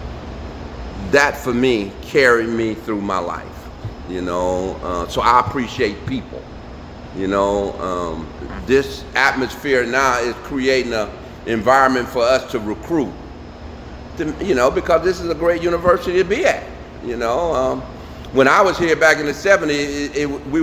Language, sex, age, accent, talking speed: English, male, 50-69, American, 150 wpm